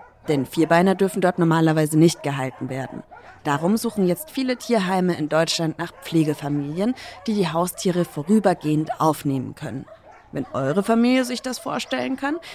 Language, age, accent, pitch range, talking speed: German, 30-49, German, 150-210 Hz, 145 wpm